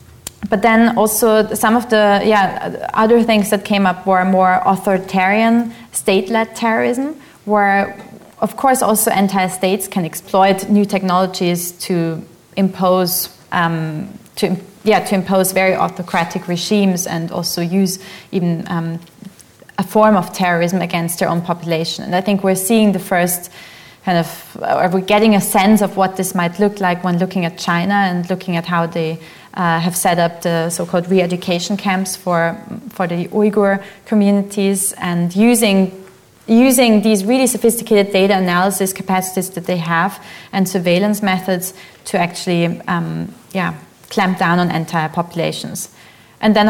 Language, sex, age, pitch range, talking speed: English, female, 20-39, 175-205 Hz, 150 wpm